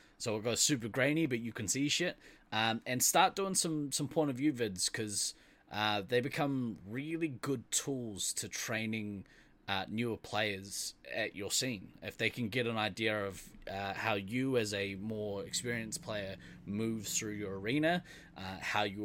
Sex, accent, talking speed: male, Australian, 180 wpm